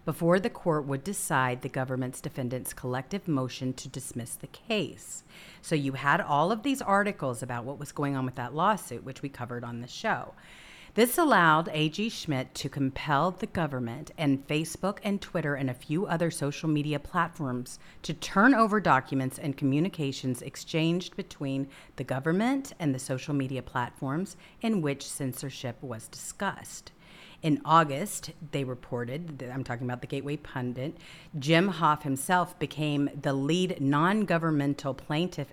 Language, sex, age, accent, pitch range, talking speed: English, female, 40-59, American, 135-175 Hz, 155 wpm